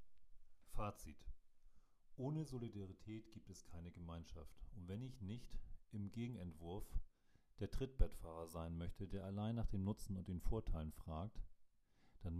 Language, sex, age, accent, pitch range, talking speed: German, male, 40-59, German, 85-105 Hz, 130 wpm